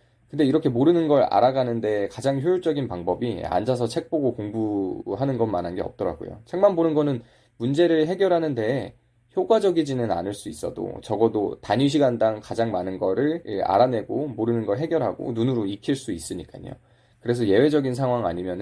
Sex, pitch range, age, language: male, 105-135 Hz, 20-39, Korean